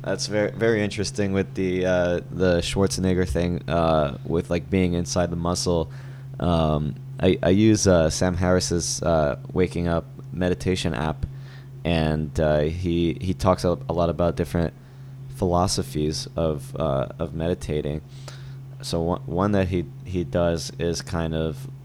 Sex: male